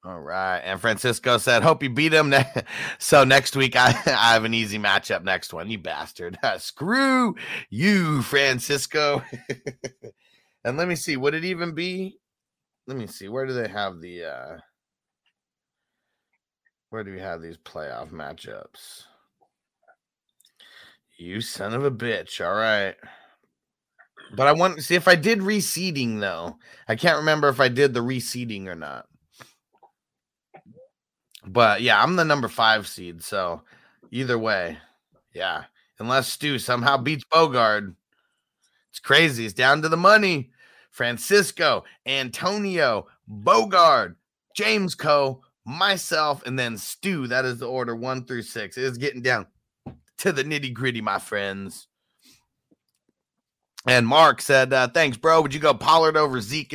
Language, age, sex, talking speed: English, 30-49, male, 145 wpm